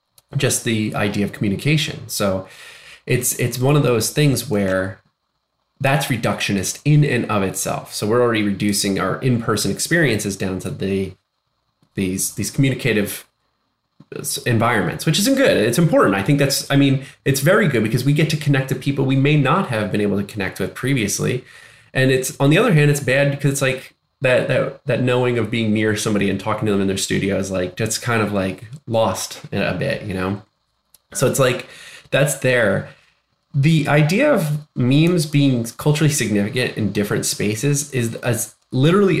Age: 20-39